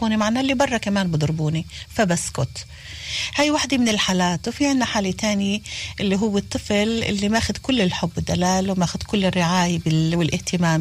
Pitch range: 170-230 Hz